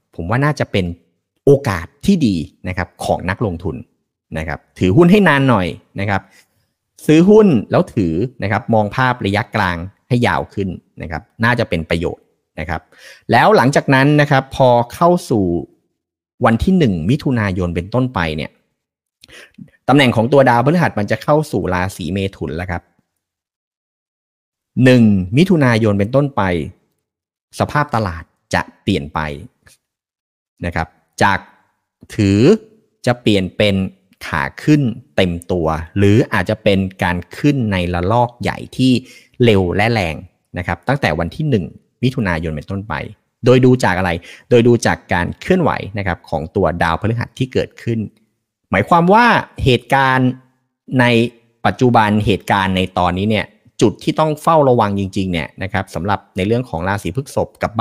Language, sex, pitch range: Thai, male, 90-125 Hz